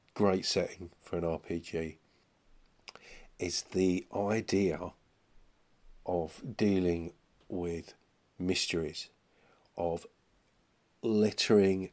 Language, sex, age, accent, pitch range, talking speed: English, male, 50-69, British, 85-95 Hz, 70 wpm